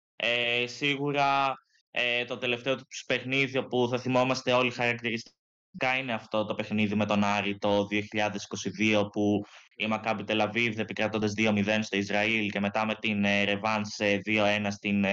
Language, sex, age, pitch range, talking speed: Greek, male, 20-39, 100-115 Hz, 140 wpm